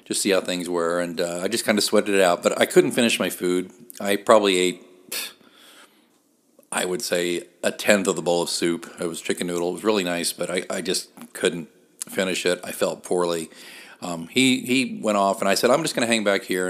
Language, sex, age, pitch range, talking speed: English, male, 40-59, 85-100 Hz, 240 wpm